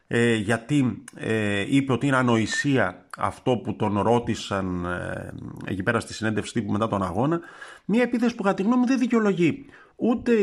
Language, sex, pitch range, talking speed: Greek, male, 110-170 Hz, 165 wpm